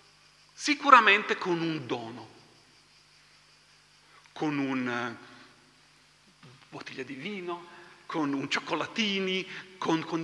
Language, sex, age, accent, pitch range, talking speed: Italian, male, 40-59, native, 155-230 Hz, 80 wpm